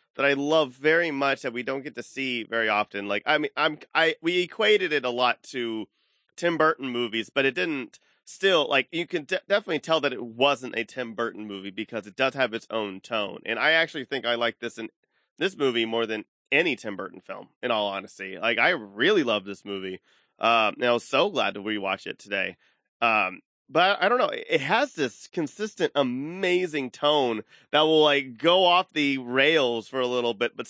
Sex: male